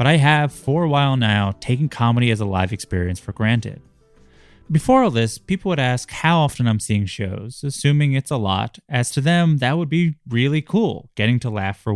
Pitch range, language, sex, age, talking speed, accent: 105-145 Hz, English, male, 20-39, 210 wpm, American